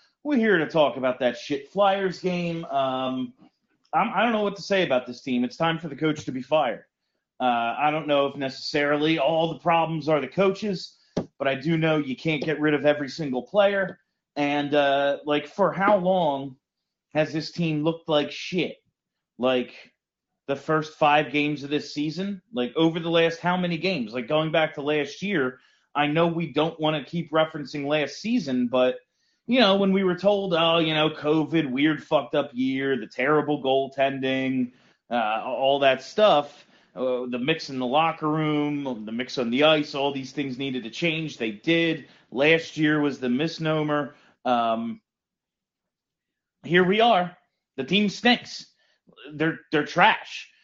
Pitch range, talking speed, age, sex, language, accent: 140-185 Hz, 180 wpm, 30-49, male, English, American